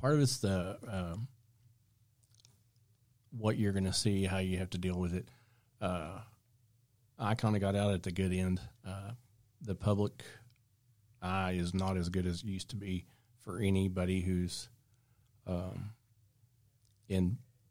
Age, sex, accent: 40-59, male, American